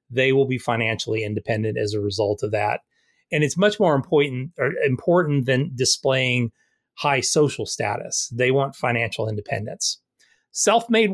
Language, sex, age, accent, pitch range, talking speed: English, male, 30-49, American, 130-170 Hz, 145 wpm